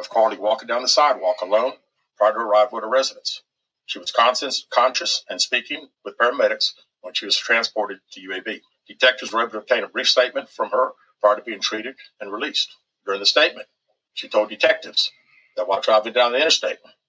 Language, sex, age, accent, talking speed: English, male, 50-69, American, 190 wpm